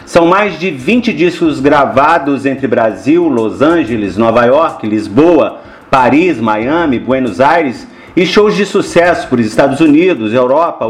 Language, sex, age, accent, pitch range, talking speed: Portuguese, male, 40-59, Brazilian, 145-200 Hz, 140 wpm